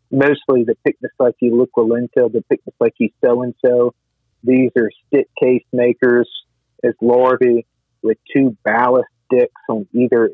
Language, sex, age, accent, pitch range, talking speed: English, male, 50-69, American, 115-125 Hz, 165 wpm